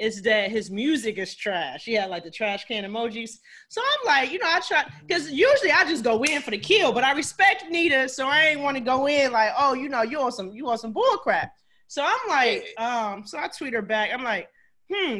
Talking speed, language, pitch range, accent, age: 245 wpm, English, 215-310 Hz, American, 20-39